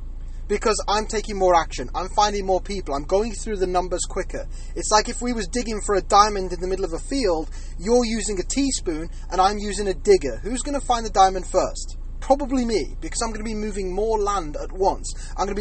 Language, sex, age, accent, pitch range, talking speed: English, male, 30-49, British, 185-245 Hz, 235 wpm